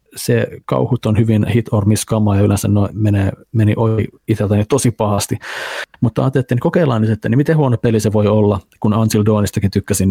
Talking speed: 180 wpm